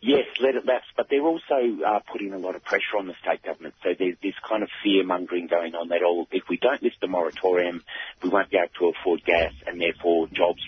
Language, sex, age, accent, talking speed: English, male, 40-59, Australian, 240 wpm